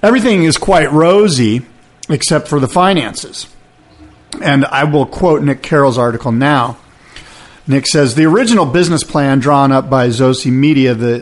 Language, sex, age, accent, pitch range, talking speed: English, male, 50-69, American, 130-180 Hz, 150 wpm